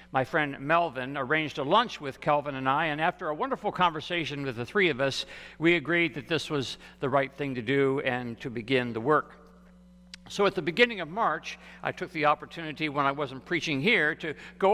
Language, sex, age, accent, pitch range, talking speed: English, male, 60-79, American, 135-175 Hz, 210 wpm